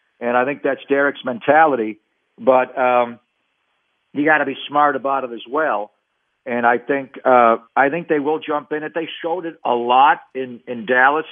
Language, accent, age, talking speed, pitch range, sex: English, American, 50-69, 190 wpm, 130-150 Hz, male